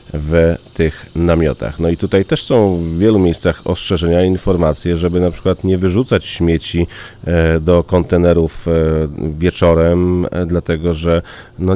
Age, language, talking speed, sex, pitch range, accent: 30-49, Polish, 130 wpm, male, 85-95 Hz, native